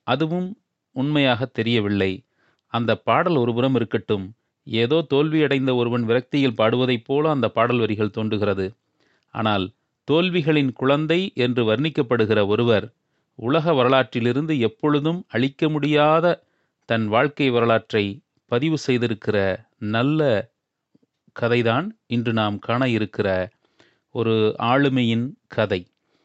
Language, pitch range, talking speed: Tamil, 110-145 Hz, 95 wpm